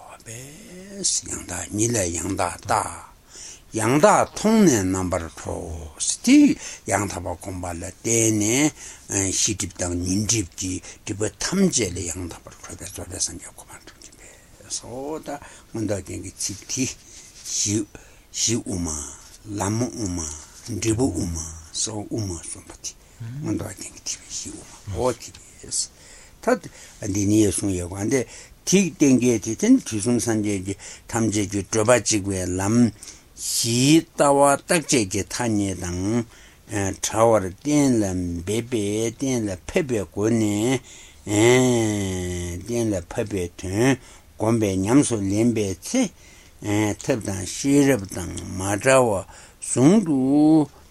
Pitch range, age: 90-120 Hz, 60-79